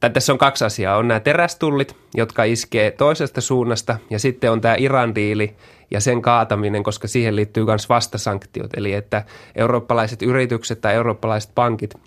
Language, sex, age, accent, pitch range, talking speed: Finnish, male, 20-39, native, 105-130 Hz, 160 wpm